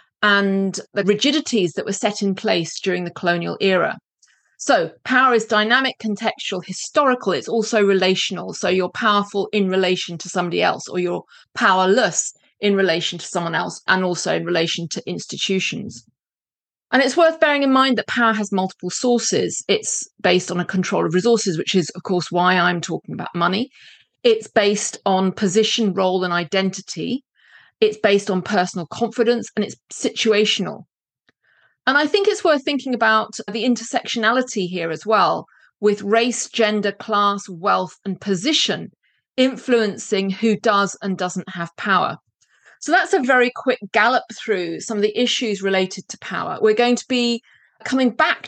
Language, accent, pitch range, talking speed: English, British, 190-235 Hz, 160 wpm